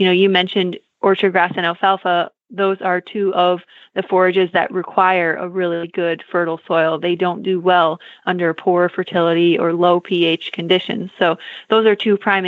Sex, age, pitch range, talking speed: female, 20-39, 175-200 Hz, 180 wpm